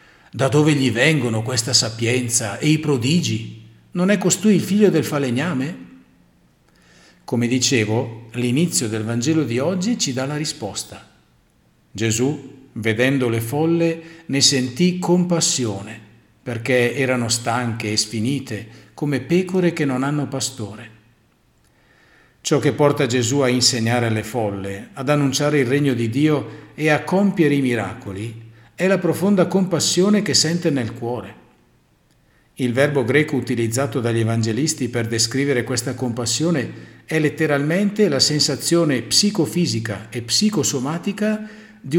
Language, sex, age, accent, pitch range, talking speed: Italian, male, 50-69, native, 115-160 Hz, 130 wpm